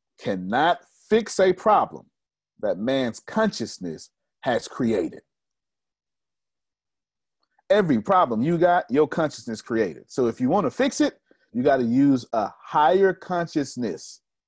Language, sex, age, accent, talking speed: English, male, 40-59, American, 125 wpm